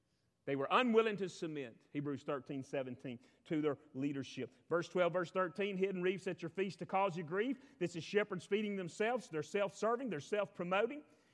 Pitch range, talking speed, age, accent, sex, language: 150-205 Hz, 175 wpm, 40-59, American, male, English